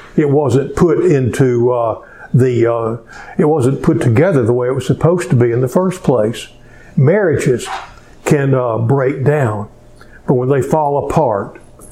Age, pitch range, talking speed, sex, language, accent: 60-79, 120-150 Hz, 160 wpm, male, English, American